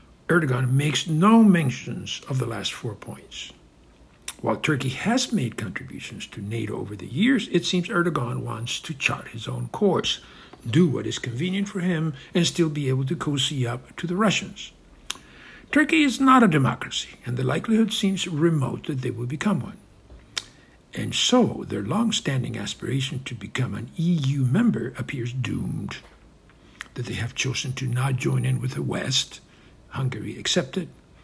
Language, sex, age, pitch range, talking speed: English, male, 60-79, 125-185 Hz, 160 wpm